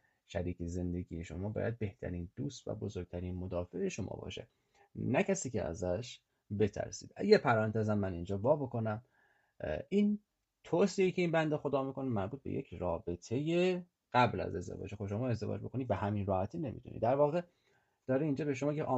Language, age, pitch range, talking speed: Persian, 30-49, 100-140 Hz, 160 wpm